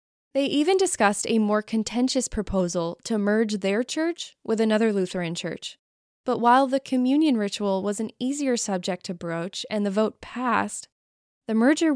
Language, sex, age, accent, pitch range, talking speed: English, female, 10-29, American, 190-245 Hz, 160 wpm